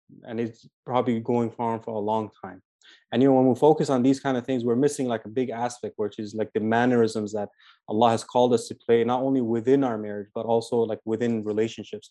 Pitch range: 110-125 Hz